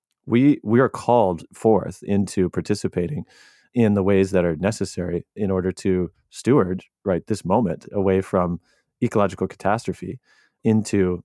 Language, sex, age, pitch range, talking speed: English, male, 30-49, 90-105 Hz, 135 wpm